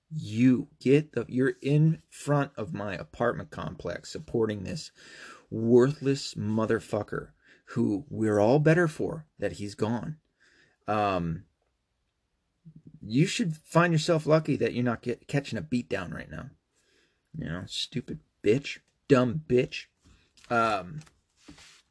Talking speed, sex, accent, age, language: 125 wpm, male, American, 30-49, English